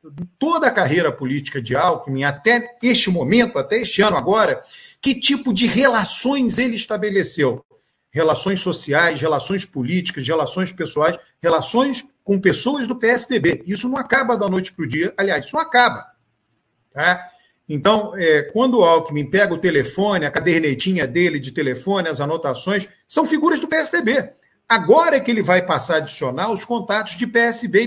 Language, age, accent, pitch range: Portuguese, 40-59, Brazilian, 165-235 Hz